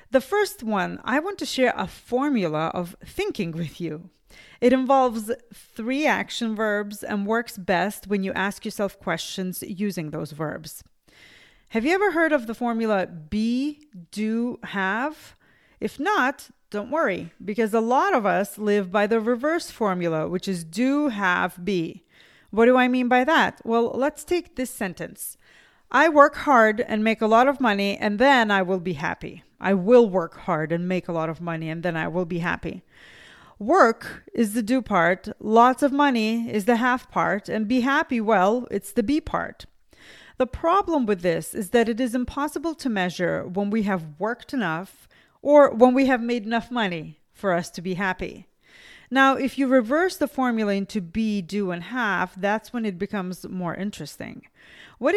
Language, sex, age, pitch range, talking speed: English, female, 30-49, 190-255 Hz, 180 wpm